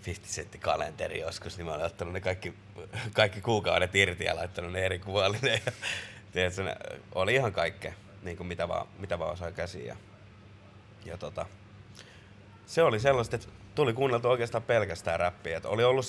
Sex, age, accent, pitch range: male, 30-49, native, 90-105 Hz